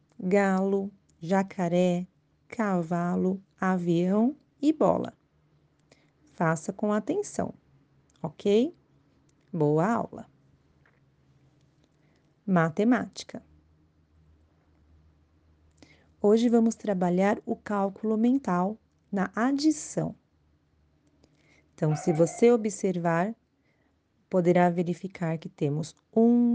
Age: 30-49